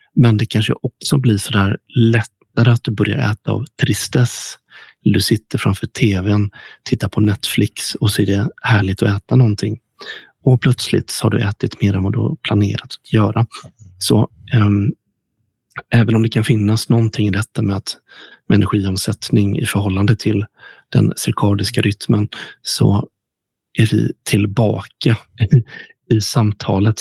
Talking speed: 150 wpm